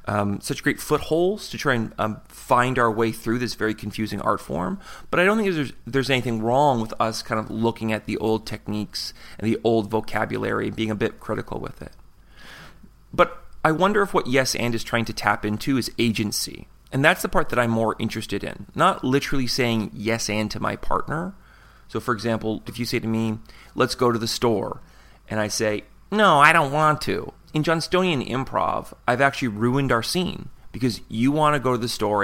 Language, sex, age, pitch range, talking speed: English, male, 30-49, 110-140 Hz, 210 wpm